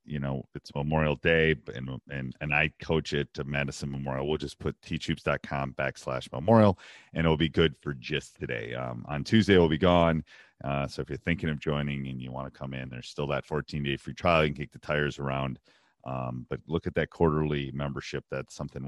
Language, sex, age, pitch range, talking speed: English, male, 40-59, 70-80 Hz, 220 wpm